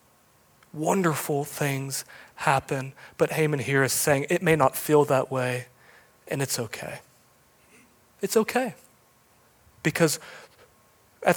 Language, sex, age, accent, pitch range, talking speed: English, male, 30-49, American, 130-160 Hz, 110 wpm